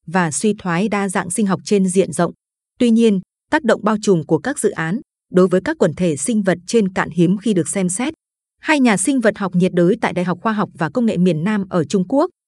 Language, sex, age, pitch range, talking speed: Vietnamese, female, 20-39, 180-225 Hz, 260 wpm